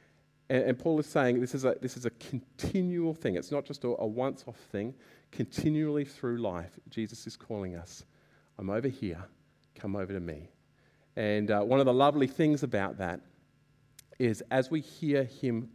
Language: English